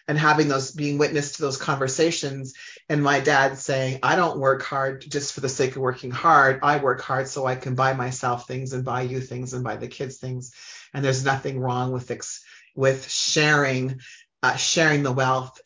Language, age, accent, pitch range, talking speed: English, 30-49, American, 130-150 Hz, 200 wpm